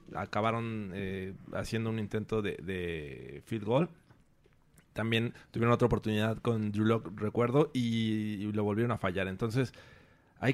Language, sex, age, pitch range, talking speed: Spanish, male, 30-49, 105-130 Hz, 135 wpm